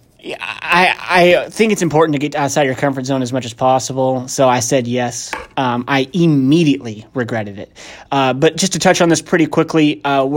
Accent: American